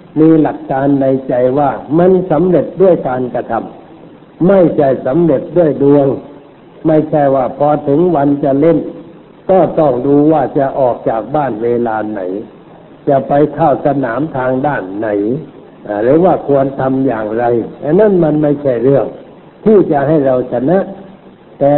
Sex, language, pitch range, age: male, Thai, 130-165 Hz, 60-79